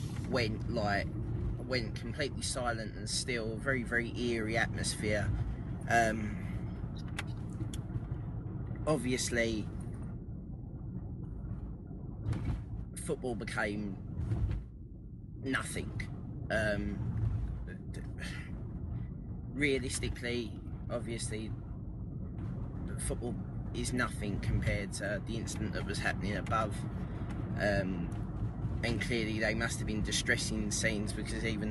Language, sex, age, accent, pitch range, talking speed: English, male, 20-39, British, 105-115 Hz, 80 wpm